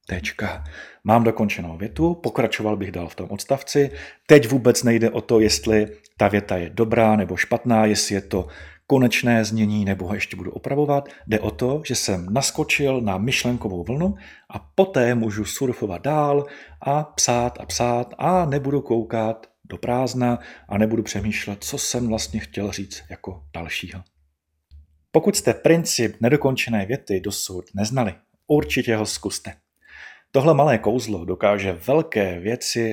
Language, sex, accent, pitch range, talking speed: Czech, male, native, 100-130 Hz, 145 wpm